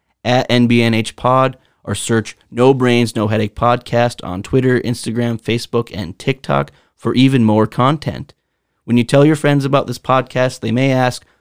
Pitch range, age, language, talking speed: 110-130 Hz, 30-49, English, 160 wpm